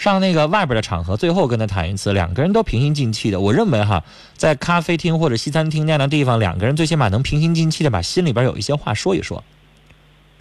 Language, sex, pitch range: Chinese, male, 105-155 Hz